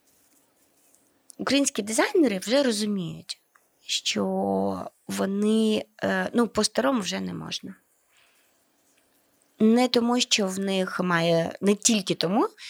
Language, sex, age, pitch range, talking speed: Ukrainian, female, 20-39, 165-215 Hz, 95 wpm